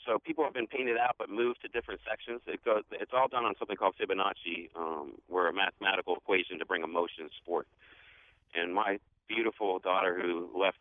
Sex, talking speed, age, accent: male, 195 wpm, 40-59, American